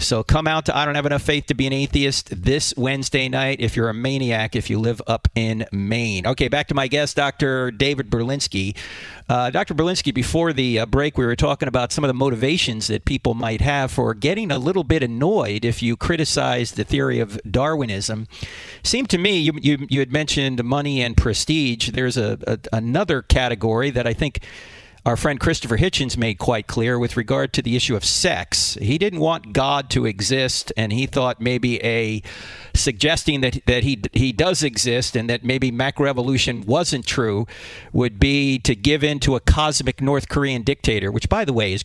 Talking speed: 200 wpm